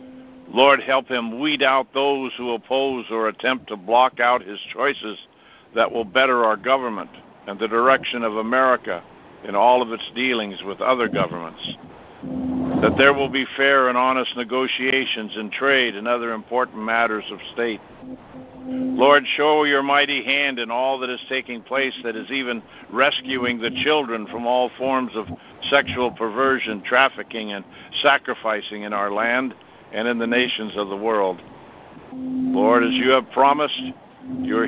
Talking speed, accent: 155 wpm, American